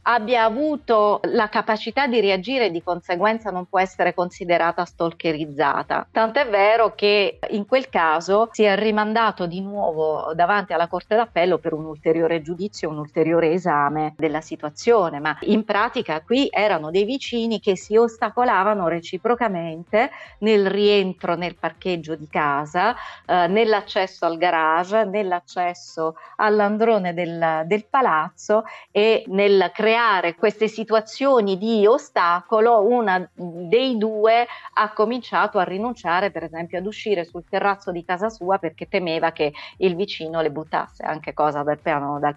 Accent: native